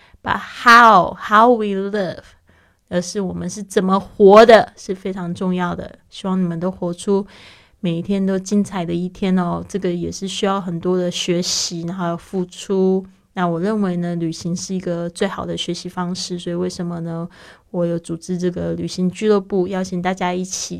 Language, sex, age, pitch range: Chinese, female, 20-39, 175-200 Hz